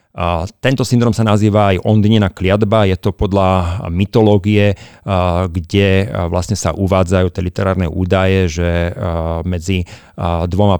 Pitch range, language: 90-100 Hz, Slovak